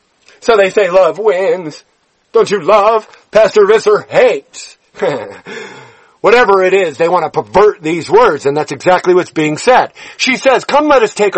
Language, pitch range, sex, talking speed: English, 190-250 Hz, male, 170 wpm